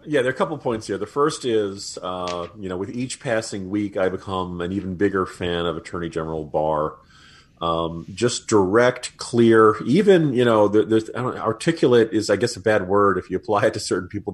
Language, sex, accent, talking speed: English, male, American, 215 wpm